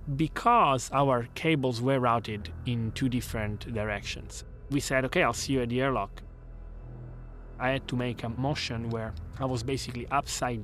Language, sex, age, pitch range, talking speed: English, male, 30-49, 105-130 Hz, 165 wpm